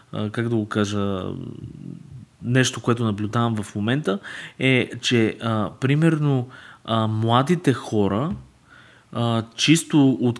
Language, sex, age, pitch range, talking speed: Bulgarian, male, 20-39, 105-130 Hz, 110 wpm